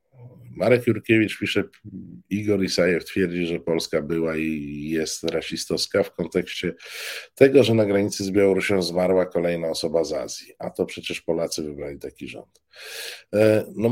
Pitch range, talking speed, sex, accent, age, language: 85-115 Hz, 140 wpm, male, native, 50-69, Polish